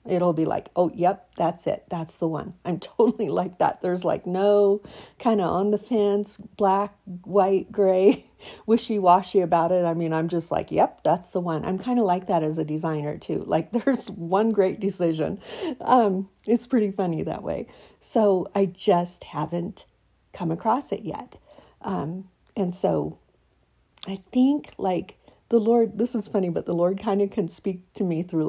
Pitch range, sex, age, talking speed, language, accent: 175-210 Hz, female, 50-69, 180 wpm, English, American